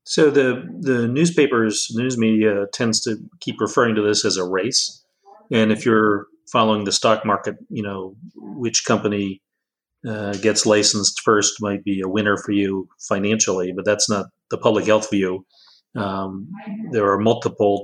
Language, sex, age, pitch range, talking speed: English, male, 40-59, 105-120 Hz, 160 wpm